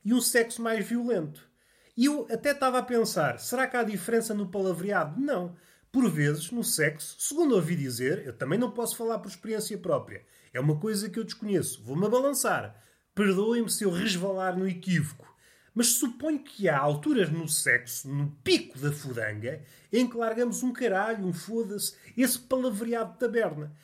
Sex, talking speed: male, 175 wpm